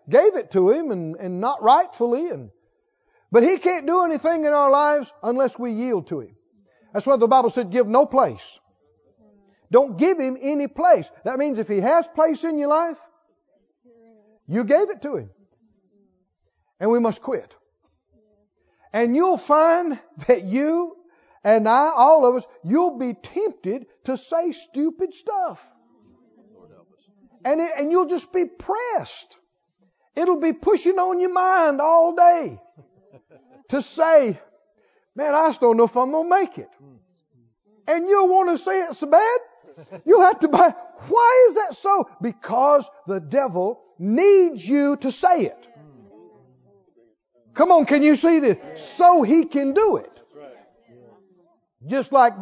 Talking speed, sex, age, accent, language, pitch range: 155 wpm, male, 50-69, American, English, 235-350 Hz